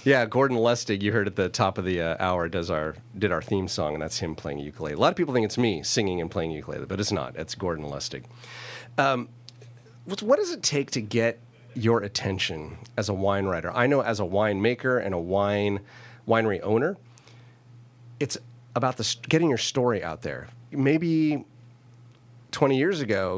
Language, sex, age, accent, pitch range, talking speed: English, male, 40-59, American, 100-120 Hz, 195 wpm